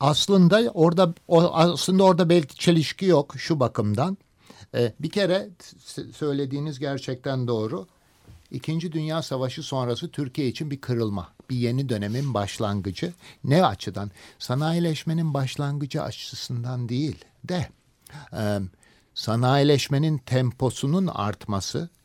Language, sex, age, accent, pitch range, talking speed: Turkish, male, 60-79, native, 105-145 Hz, 100 wpm